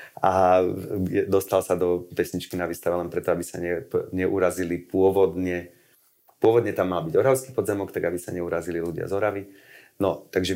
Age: 30-49